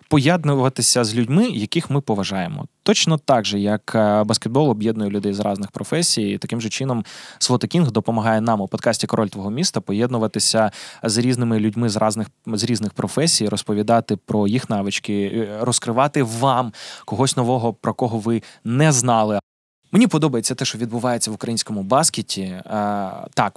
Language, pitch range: Ukrainian, 105-130 Hz